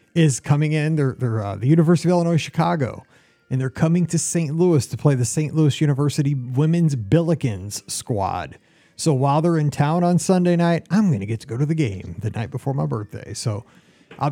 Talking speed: 210 wpm